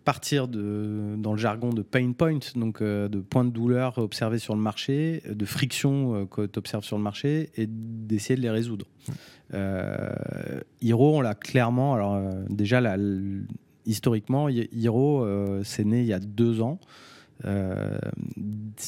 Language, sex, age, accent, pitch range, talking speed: French, male, 30-49, French, 105-130 Hz, 160 wpm